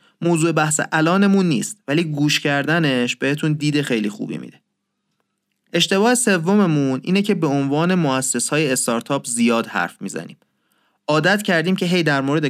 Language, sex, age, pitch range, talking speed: Persian, male, 30-49, 130-170 Hz, 140 wpm